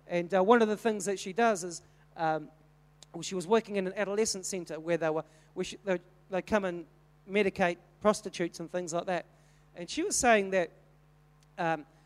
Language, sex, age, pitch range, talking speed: English, male, 40-59, 150-220 Hz, 170 wpm